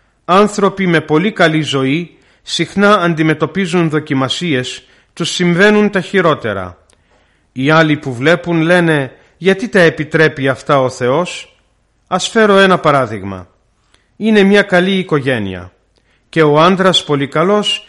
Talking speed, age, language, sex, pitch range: 120 wpm, 40-59, Greek, male, 135-180 Hz